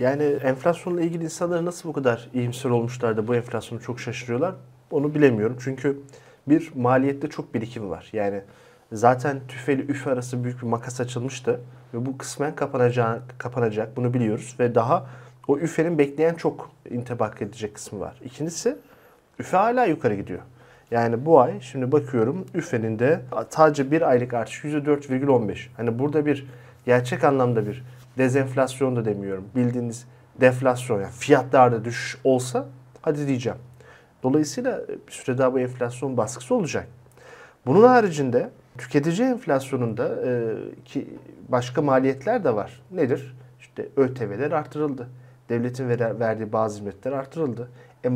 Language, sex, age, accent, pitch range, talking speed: Turkish, male, 40-59, native, 120-145 Hz, 135 wpm